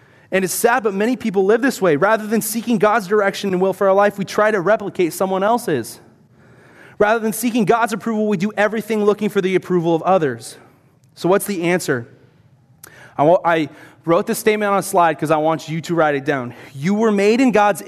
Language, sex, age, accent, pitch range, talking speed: English, male, 20-39, American, 155-210 Hz, 210 wpm